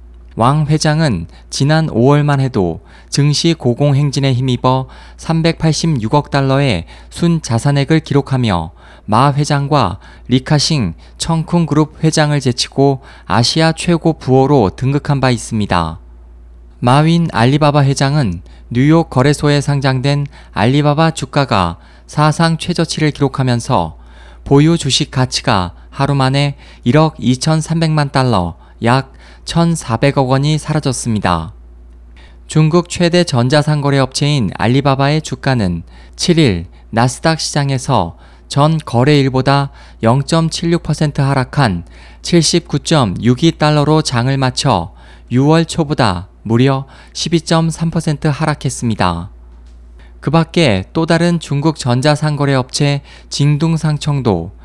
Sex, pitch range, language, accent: male, 110-155 Hz, Korean, native